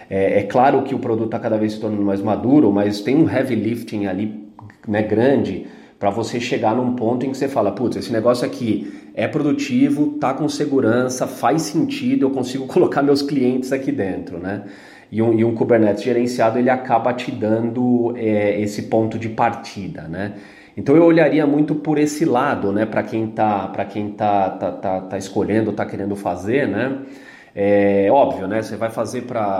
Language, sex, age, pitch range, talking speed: Portuguese, male, 30-49, 105-130 Hz, 185 wpm